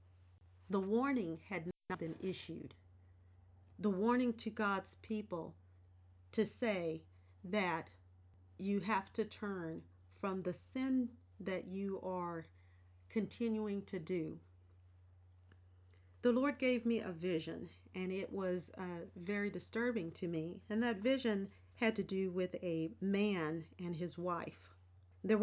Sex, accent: female, American